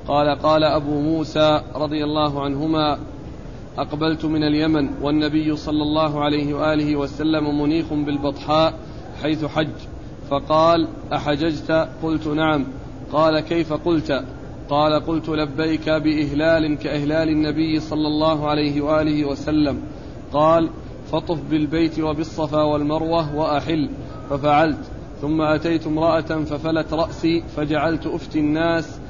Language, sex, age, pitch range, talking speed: Arabic, male, 40-59, 150-160 Hz, 110 wpm